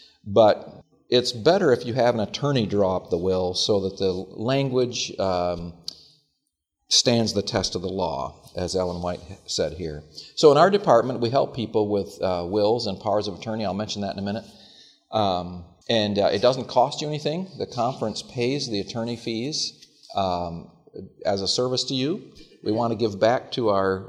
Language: English